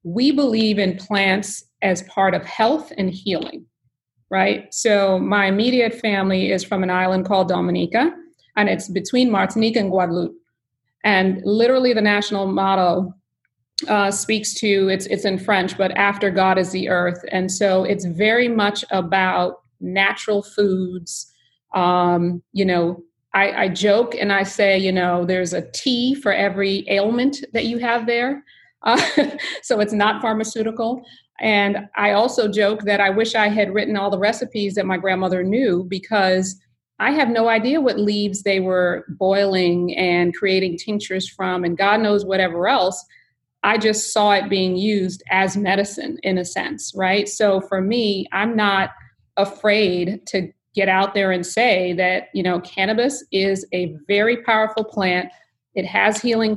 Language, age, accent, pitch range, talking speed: English, 40-59, American, 185-215 Hz, 160 wpm